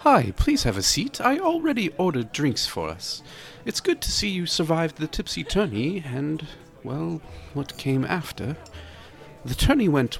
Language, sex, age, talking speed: English, male, 40-59, 165 wpm